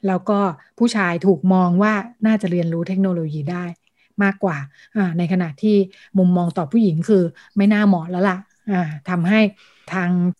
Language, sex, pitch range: Thai, female, 180-210 Hz